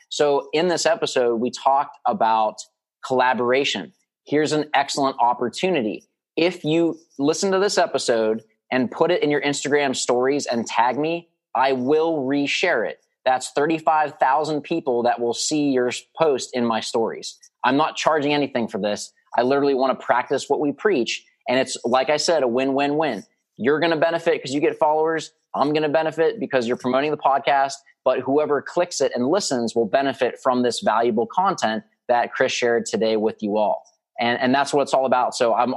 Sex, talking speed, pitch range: male, 185 wpm, 125-155 Hz